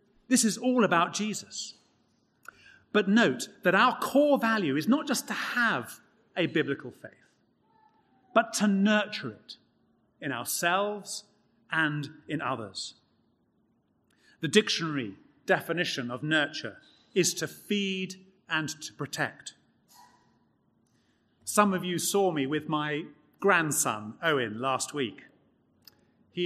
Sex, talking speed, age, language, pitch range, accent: male, 115 wpm, 40-59, English, 155-215 Hz, British